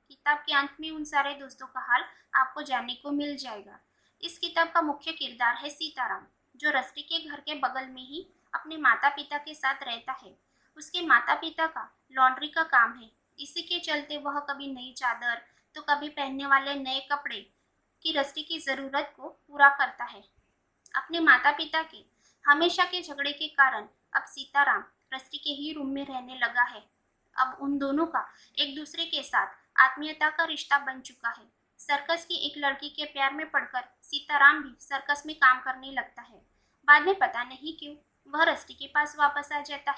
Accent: native